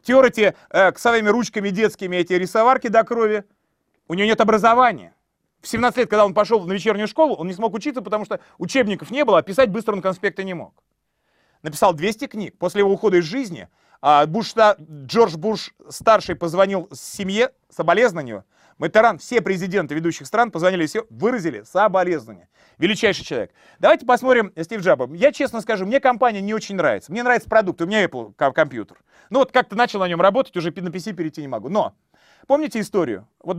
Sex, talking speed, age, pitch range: male, 180 wpm, 30-49, 180-230 Hz